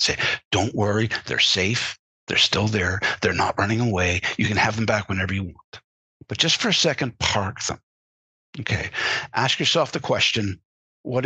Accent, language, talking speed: American, English, 175 wpm